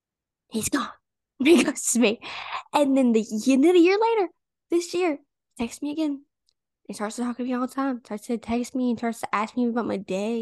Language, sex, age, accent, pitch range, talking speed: English, female, 10-29, American, 210-265 Hz, 230 wpm